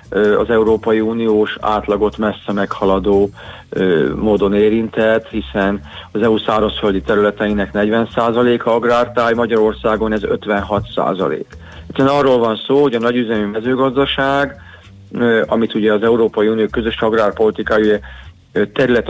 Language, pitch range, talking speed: Hungarian, 100-115 Hz, 115 wpm